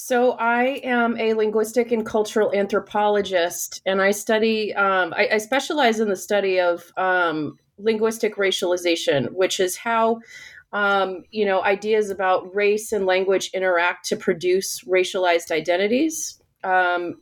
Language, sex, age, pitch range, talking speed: English, female, 30-49, 180-225 Hz, 135 wpm